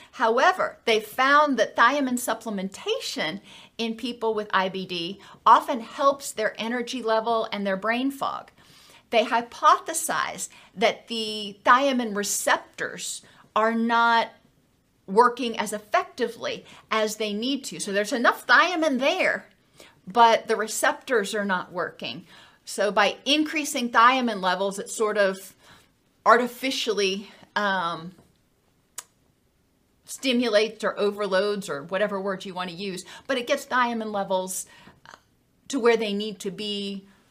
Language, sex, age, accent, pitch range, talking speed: English, female, 40-59, American, 200-260 Hz, 120 wpm